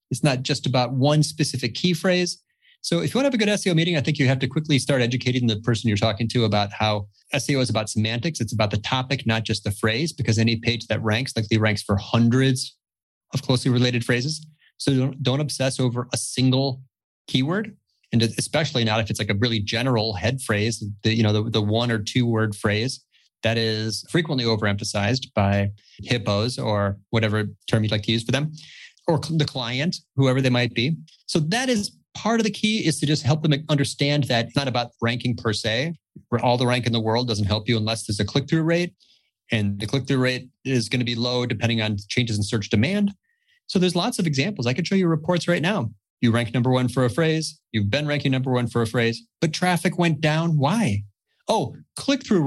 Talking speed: 220 wpm